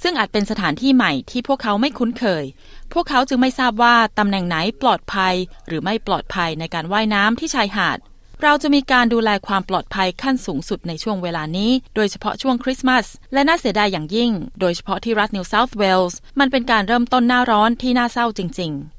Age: 20-39